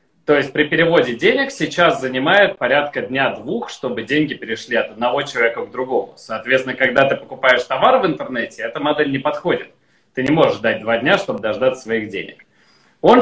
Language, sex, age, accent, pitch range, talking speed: Russian, male, 30-49, native, 130-200 Hz, 175 wpm